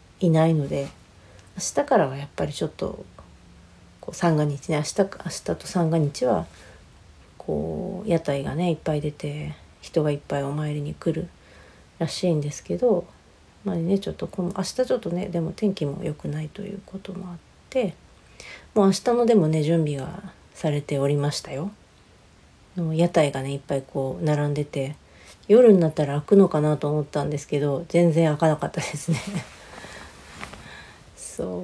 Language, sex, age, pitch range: Japanese, female, 40-59, 140-185 Hz